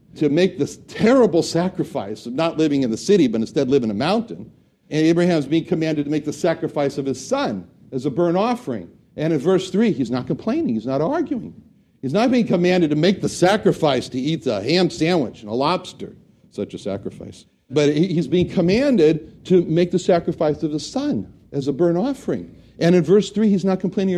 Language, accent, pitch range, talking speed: English, American, 140-190 Hz, 205 wpm